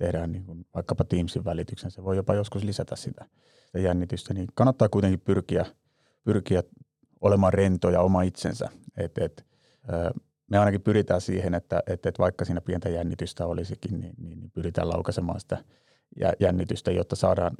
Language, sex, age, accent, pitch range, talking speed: Finnish, male, 30-49, native, 90-100 Hz, 155 wpm